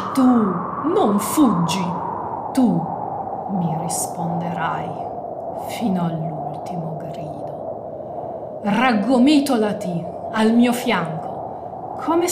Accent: native